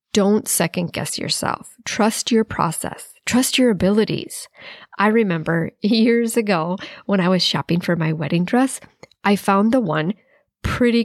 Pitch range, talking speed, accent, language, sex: 185-235 Hz, 145 wpm, American, English, female